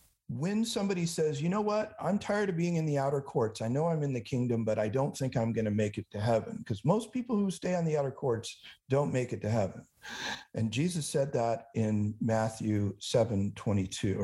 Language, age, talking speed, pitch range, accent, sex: English, 50-69, 215 wpm, 110-155 Hz, American, male